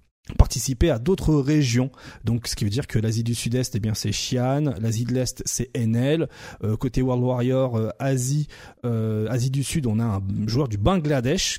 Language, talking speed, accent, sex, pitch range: French, 200 wpm, French, male, 115-160 Hz